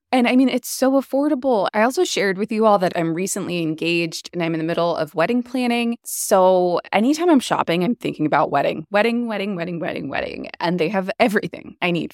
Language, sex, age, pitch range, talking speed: English, female, 20-39, 175-250 Hz, 215 wpm